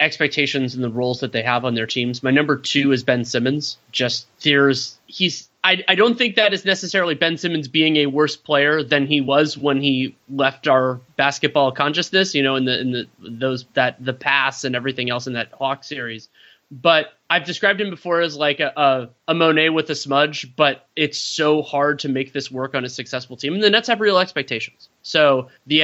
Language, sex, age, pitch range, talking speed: English, male, 30-49, 130-160 Hz, 215 wpm